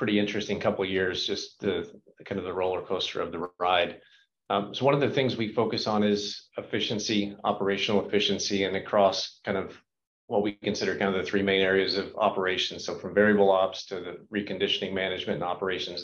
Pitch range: 100-110 Hz